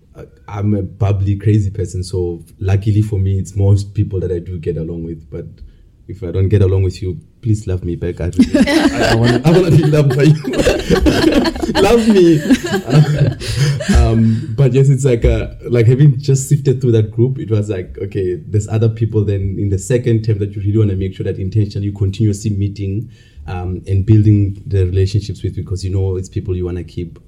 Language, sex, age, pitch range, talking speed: English, male, 20-39, 90-115 Hz, 200 wpm